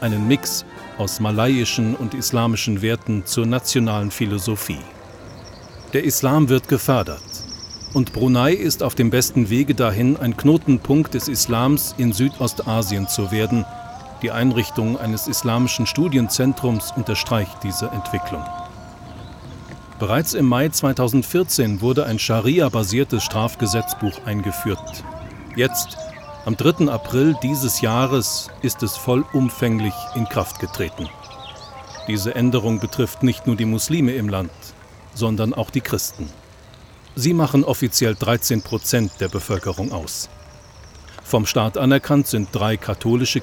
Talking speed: 120 wpm